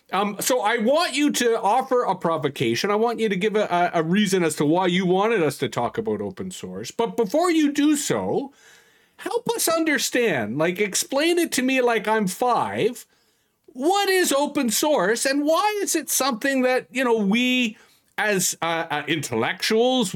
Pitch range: 180-265 Hz